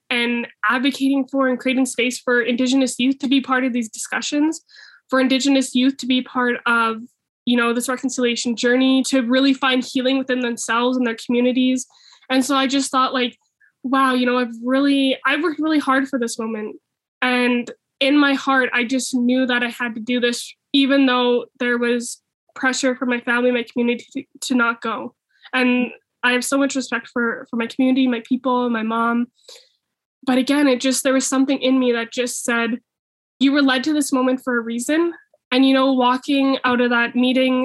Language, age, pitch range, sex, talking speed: English, 10-29, 240-270 Hz, female, 200 wpm